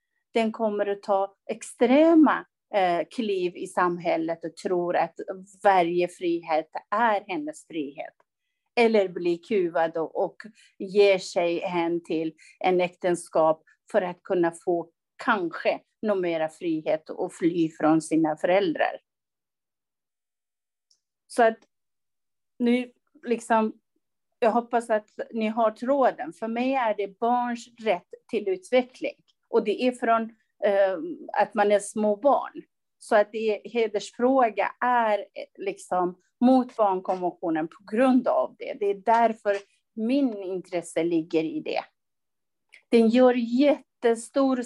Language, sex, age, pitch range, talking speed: English, female, 40-59, 185-255 Hz, 120 wpm